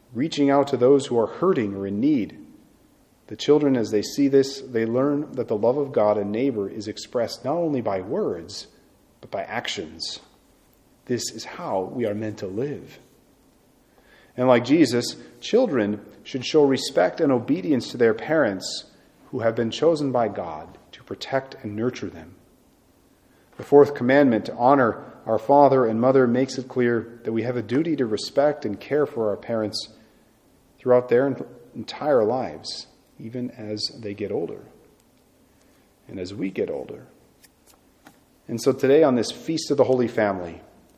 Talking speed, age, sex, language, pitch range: 165 wpm, 40-59, male, English, 110-135 Hz